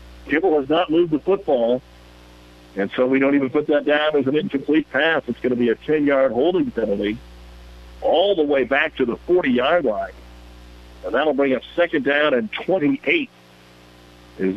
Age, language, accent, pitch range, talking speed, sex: 50-69, English, American, 110-150 Hz, 175 wpm, male